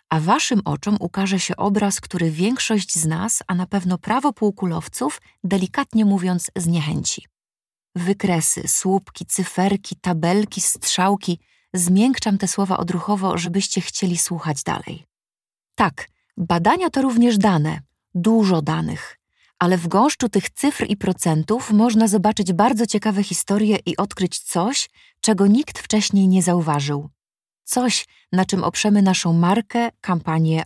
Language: Polish